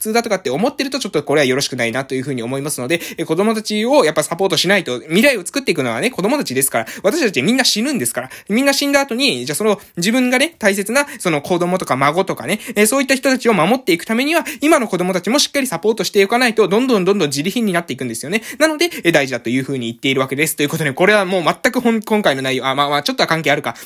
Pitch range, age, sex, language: 140-225 Hz, 20-39, male, Japanese